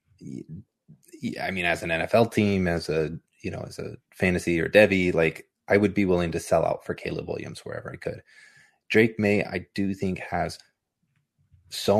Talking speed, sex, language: 180 wpm, male, English